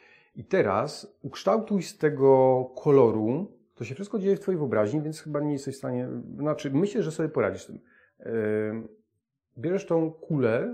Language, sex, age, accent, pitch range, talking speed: Polish, male, 40-59, native, 115-155 Hz, 170 wpm